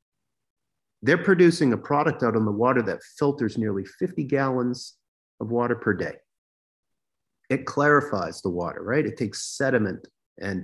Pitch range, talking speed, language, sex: 100-125 Hz, 145 wpm, English, male